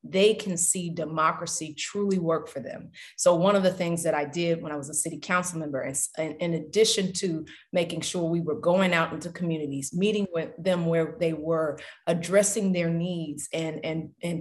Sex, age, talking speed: female, 30-49, 195 wpm